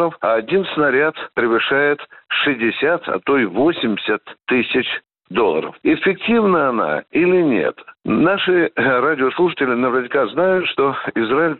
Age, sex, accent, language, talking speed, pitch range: 60-79, male, native, Russian, 110 wpm, 130-185 Hz